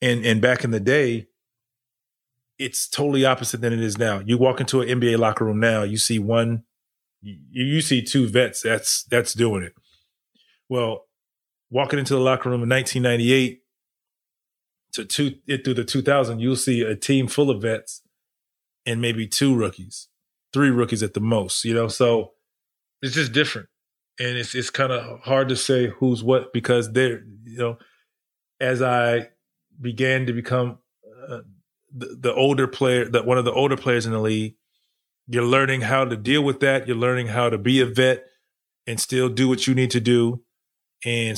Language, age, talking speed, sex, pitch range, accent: English, 30-49, 180 wpm, male, 115-130 Hz, American